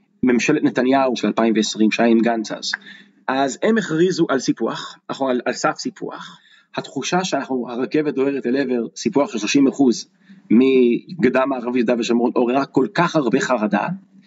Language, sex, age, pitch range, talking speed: Hebrew, male, 30-49, 130-195 Hz, 145 wpm